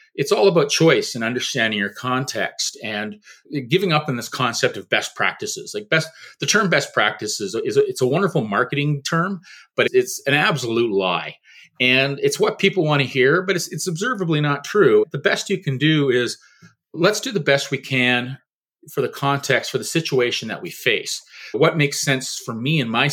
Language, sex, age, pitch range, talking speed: English, male, 40-59, 130-210 Hz, 195 wpm